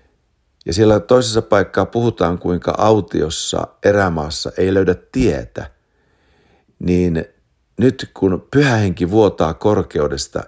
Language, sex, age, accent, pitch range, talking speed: English, male, 50-69, Finnish, 75-110 Hz, 105 wpm